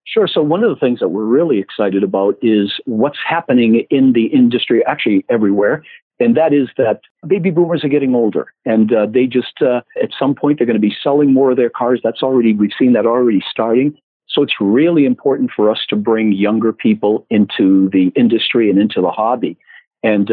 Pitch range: 105-125 Hz